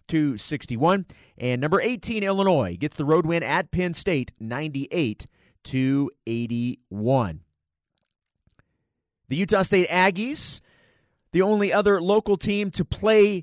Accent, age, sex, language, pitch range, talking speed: American, 30-49, male, English, 135-190 Hz, 105 wpm